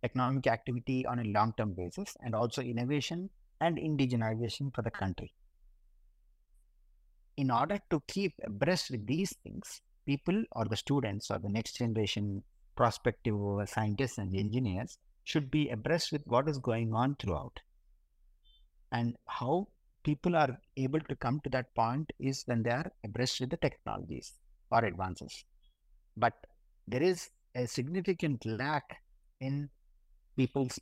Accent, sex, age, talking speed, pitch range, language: Indian, male, 50-69, 140 wpm, 105-140 Hz, English